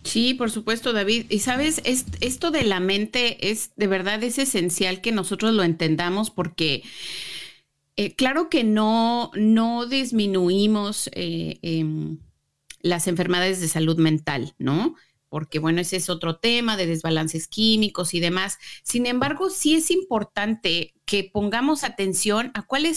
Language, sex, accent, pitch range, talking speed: Spanish, female, Mexican, 185-245 Hz, 145 wpm